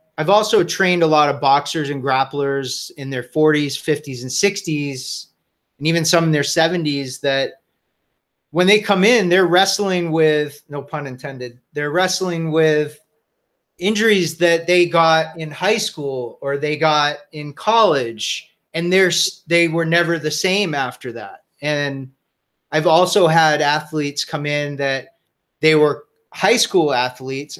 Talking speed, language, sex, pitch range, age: 150 wpm, English, male, 140-175 Hz, 30-49